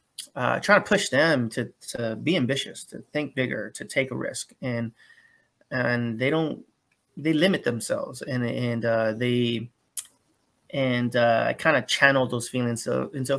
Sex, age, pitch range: male, 30-49, 115-135 Hz